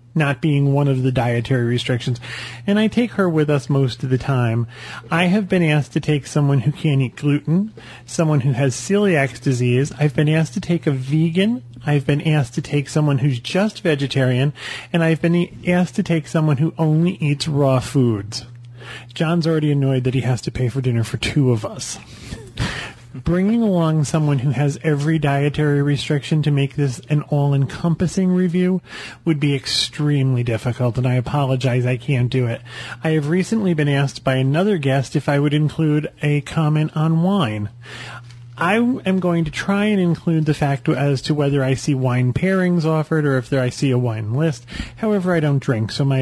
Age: 30-49